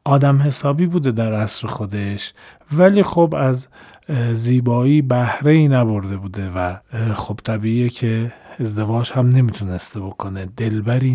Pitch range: 110-135 Hz